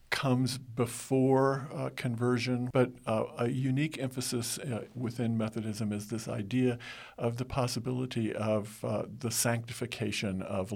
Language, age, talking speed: English, 50-69, 130 wpm